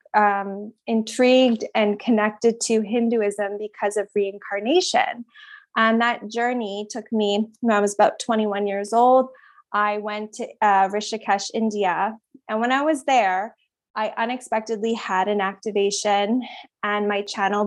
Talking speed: 145 wpm